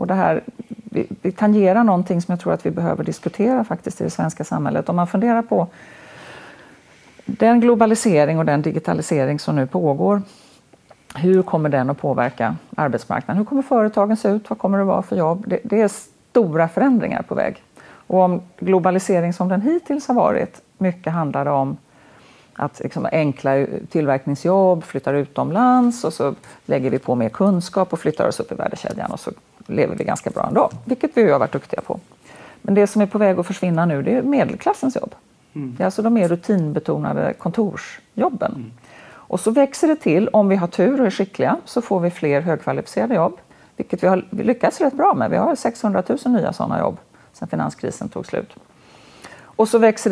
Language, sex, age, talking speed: Swedish, female, 40-59, 185 wpm